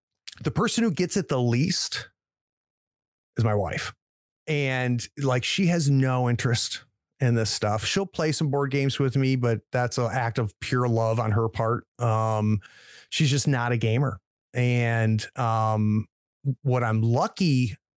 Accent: American